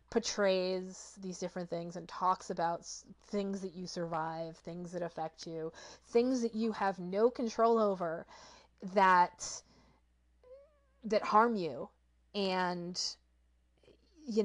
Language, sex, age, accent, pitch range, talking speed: English, female, 30-49, American, 175-220 Hz, 115 wpm